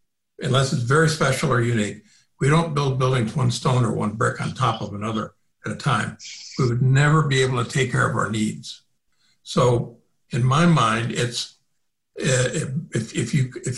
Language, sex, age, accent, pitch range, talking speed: English, male, 60-79, American, 120-155 Hz, 170 wpm